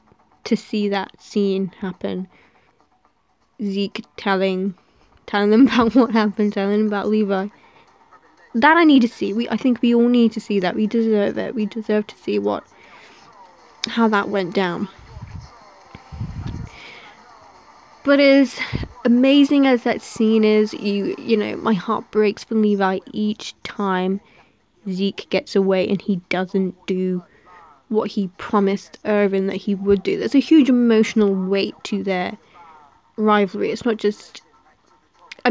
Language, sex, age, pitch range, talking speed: English, female, 10-29, 200-245 Hz, 145 wpm